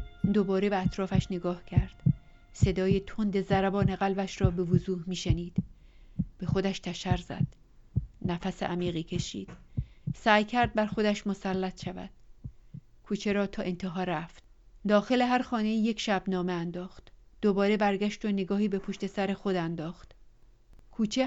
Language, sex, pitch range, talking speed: Persian, female, 180-200 Hz, 135 wpm